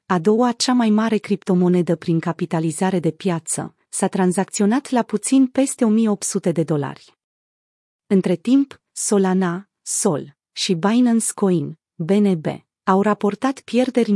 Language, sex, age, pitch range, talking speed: Romanian, female, 30-49, 180-230 Hz, 125 wpm